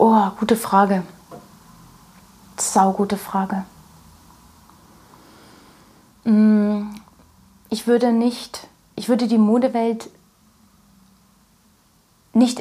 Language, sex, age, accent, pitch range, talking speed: German, female, 30-49, German, 195-225 Hz, 65 wpm